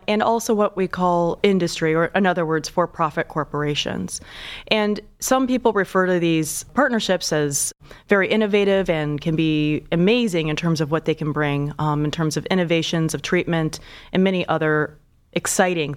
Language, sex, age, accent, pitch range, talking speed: English, female, 30-49, American, 160-200 Hz, 165 wpm